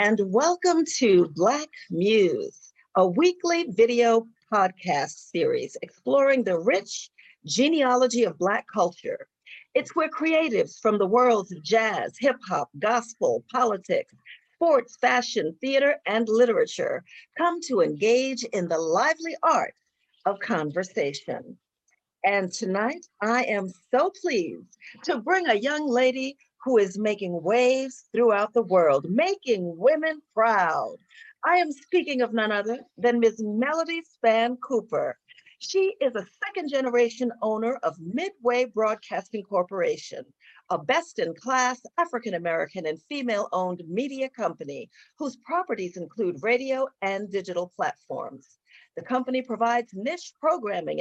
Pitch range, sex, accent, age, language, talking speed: 210-320 Hz, female, American, 50-69, English, 120 wpm